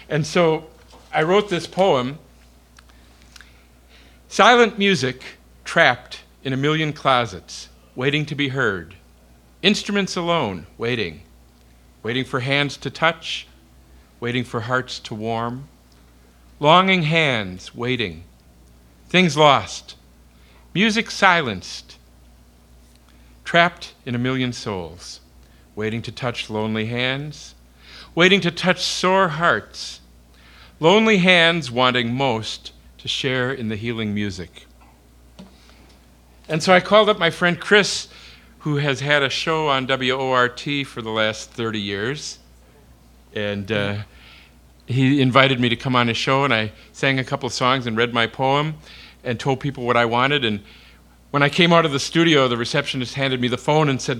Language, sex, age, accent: English, male, 50-69, American